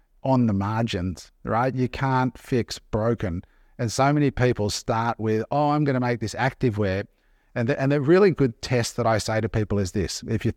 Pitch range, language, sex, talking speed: 105-130 Hz, English, male, 215 wpm